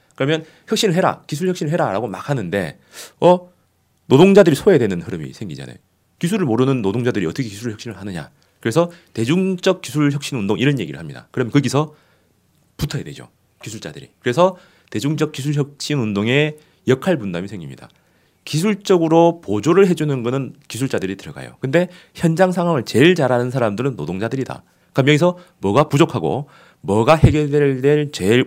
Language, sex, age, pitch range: Korean, male, 30-49, 120-165 Hz